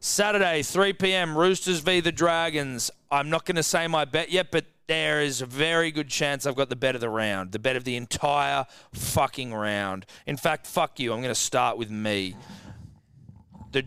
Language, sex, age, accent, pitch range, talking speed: English, male, 30-49, Australian, 95-145 Hz, 205 wpm